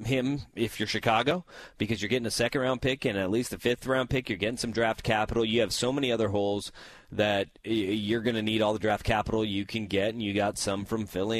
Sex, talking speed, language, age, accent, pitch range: male, 235 wpm, English, 30-49, American, 105-120 Hz